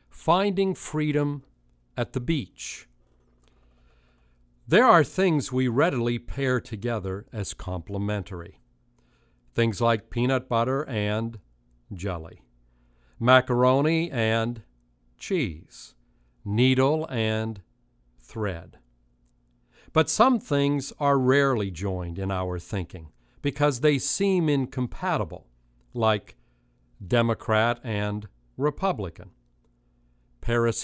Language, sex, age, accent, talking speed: English, male, 50-69, American, 85 wpm